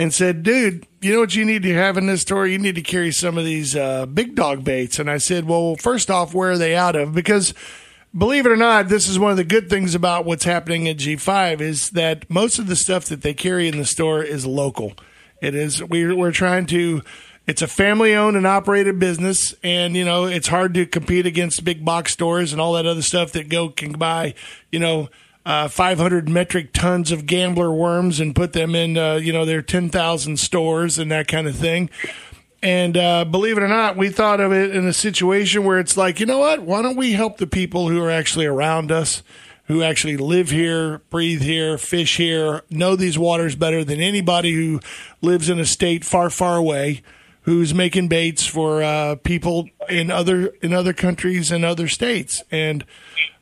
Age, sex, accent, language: 50-69, male, American, English